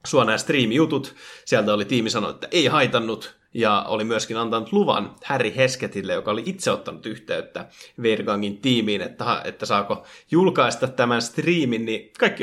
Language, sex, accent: Finnish, male, native